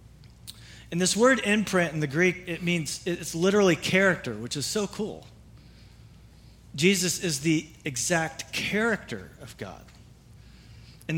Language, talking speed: English, 130 wpm